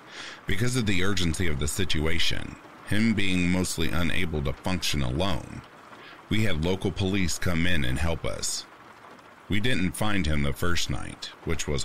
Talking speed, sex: 160 wpm, male